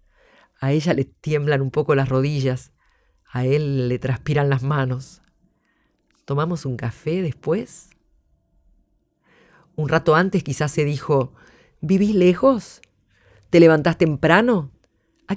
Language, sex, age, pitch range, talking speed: Spanish, female, 40-59, 130-170 Hz, 115 wpm